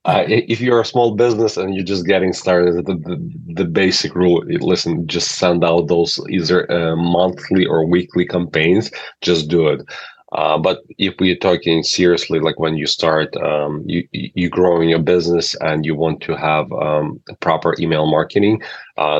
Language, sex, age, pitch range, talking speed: English, male, 30-49, 80-90 Hz, 180 wpm